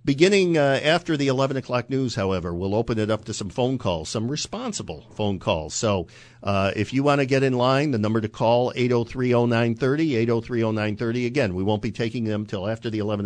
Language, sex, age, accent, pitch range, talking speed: English, male, 50-69, American, 105-135 Hz, 250 wpm